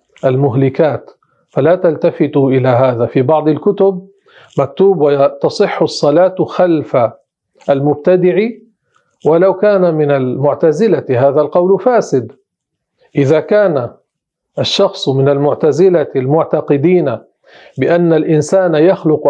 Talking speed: 90 wpm